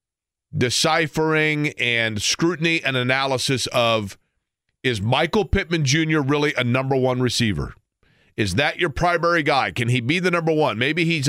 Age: 40-59